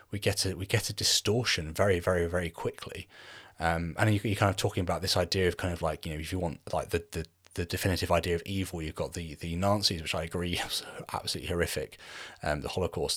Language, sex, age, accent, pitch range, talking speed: English, male, 30-49, British, 85-100 Hz, 235 wpm